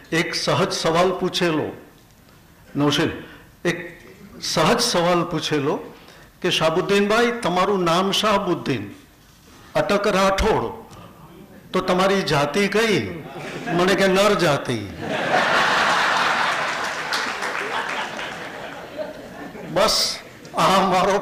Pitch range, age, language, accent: 170-200 Hz, 60-79, Gujarati, native